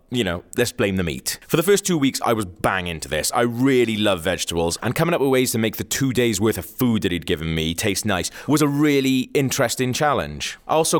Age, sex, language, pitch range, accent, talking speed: 20-39, male, English, 100-135 Hz, British, 250 wpm